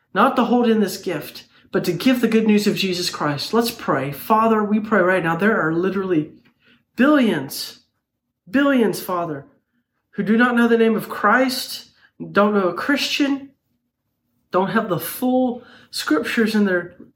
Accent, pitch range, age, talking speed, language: American, 155-205 Hz, 40-59, 165 wpm, English